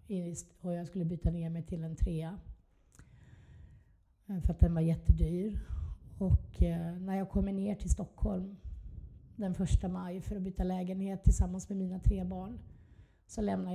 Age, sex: 30-49, female